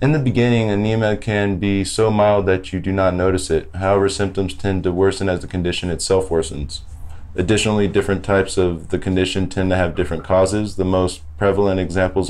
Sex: male